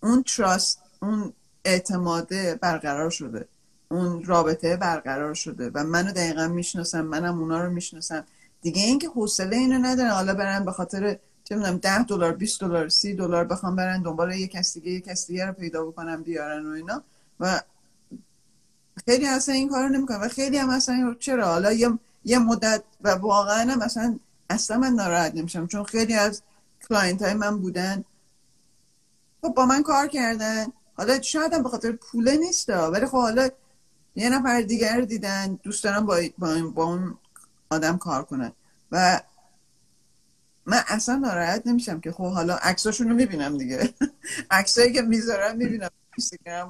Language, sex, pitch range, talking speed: Persian, female, 175-235 Hz, 150 wpm